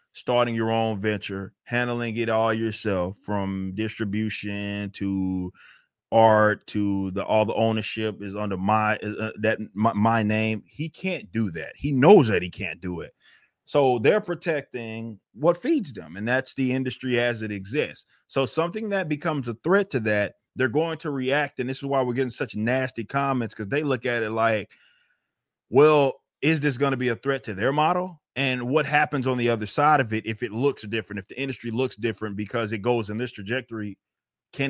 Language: English